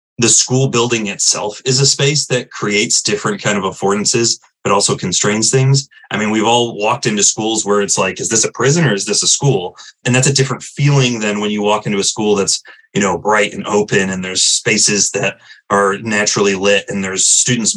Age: 30-49